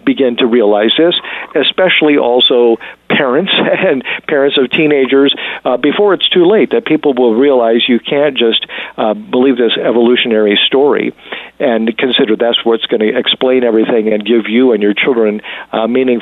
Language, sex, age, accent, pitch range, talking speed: English, male, 50-69, American, 115-145 Hz, 165 wpm